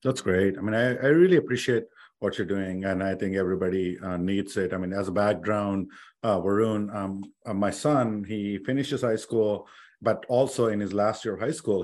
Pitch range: 95-110 Hz